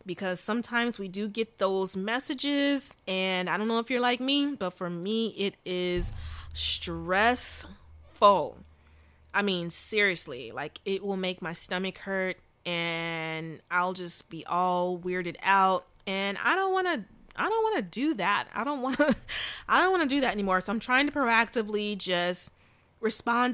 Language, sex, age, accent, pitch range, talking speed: English, female, 20-39, American, 175-225 Hz, 170 wpm